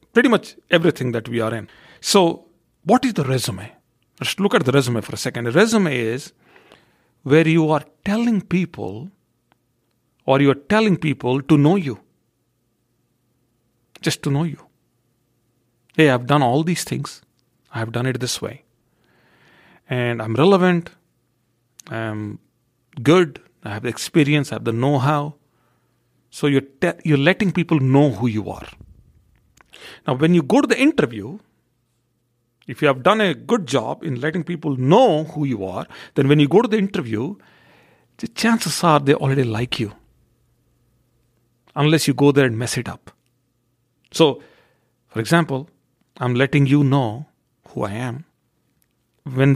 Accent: Indian